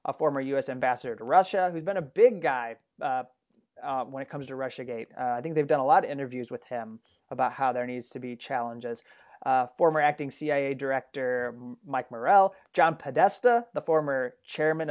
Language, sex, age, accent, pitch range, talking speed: English, male, 30-49, American, 135-175 Hz, 195 wpm